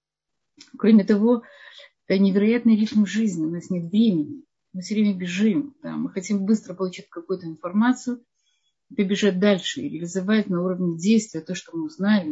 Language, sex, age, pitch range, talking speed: Russian, female, 30-49, 185-225 Hz, 145 wpm